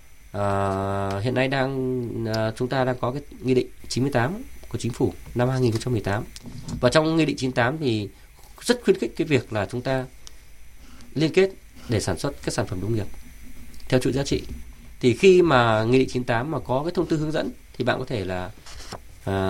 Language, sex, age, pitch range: Vietnamese, male, 20-39, 105-135 Hz